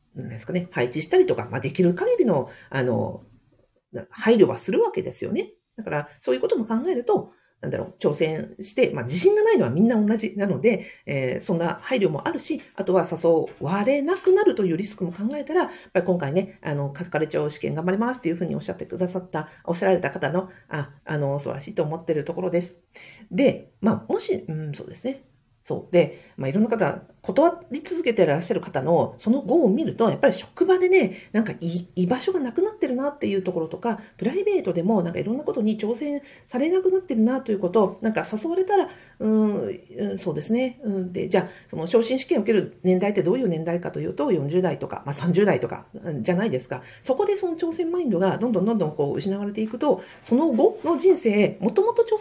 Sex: female